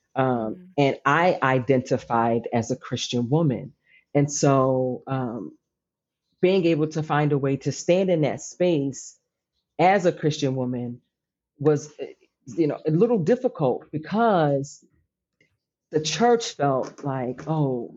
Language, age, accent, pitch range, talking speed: English, 40-59, American, 125-170 Hz, 125 wpm